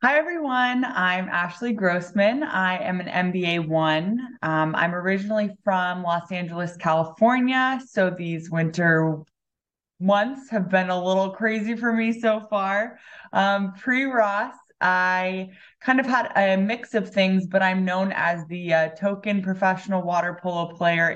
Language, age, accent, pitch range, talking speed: English, 20-39, American, 170-215 Hz, 145 wpm